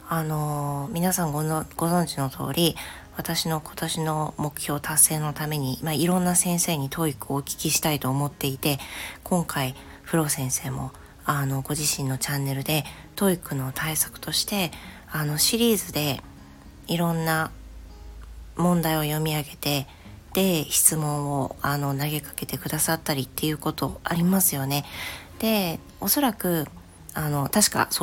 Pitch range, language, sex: 135-165 Hz, Japanese, female